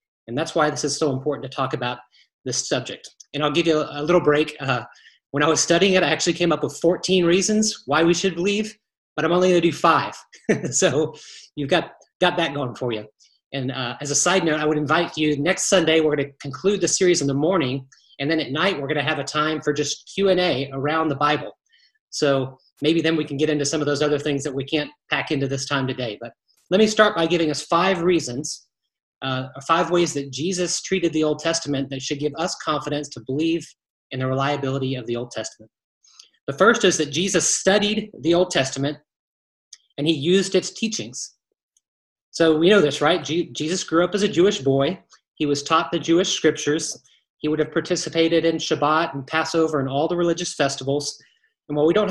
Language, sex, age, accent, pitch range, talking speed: English, male, 30-49, American, 140-175 Hz, 220 wpm